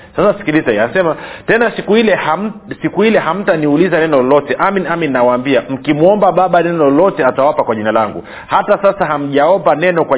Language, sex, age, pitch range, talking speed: Swahili, male, 40-59, 140-185 Hz, 165 wpm